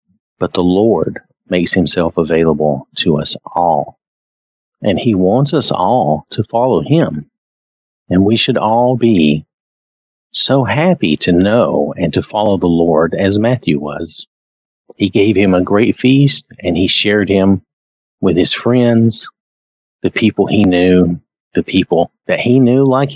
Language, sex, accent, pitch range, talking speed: English, male, American, 85-120 Hz, 150 wpm